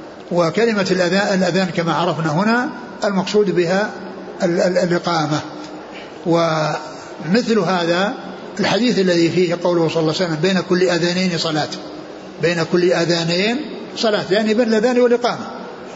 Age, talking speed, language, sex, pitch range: 60-79, 115 wpm, Arabic, male, 170-210 Hz